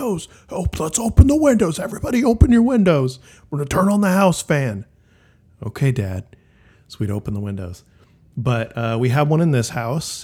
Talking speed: 190 wpm